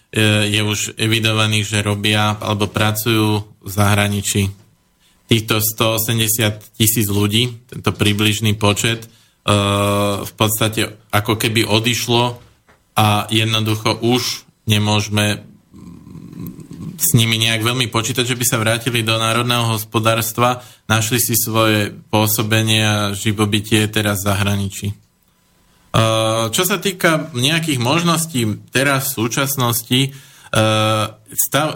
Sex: male